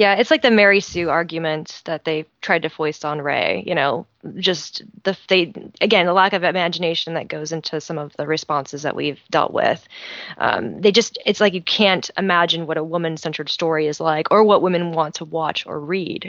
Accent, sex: American, female